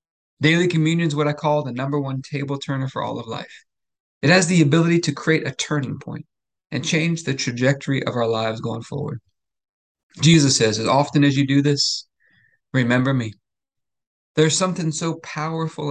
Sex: male